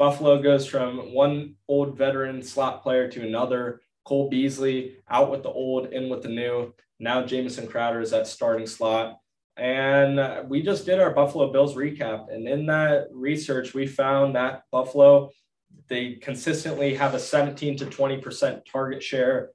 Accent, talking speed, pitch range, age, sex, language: American, 160 wpm, 115-140 Hz, 20-39, male, English